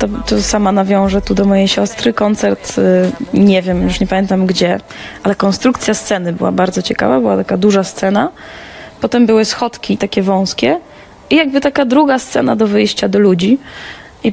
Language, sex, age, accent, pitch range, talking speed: Polish, female, 20-39, native, 200-240 Hz, 170 wpm